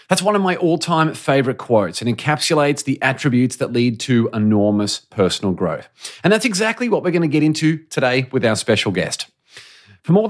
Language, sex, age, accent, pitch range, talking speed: English, male, 30-49, Australian, 120-160 Hz, 185 wpm